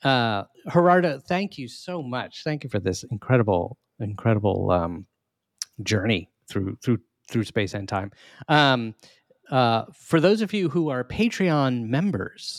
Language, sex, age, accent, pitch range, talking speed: English, male, 30-49, American, 115-150 Hz, 145 wpm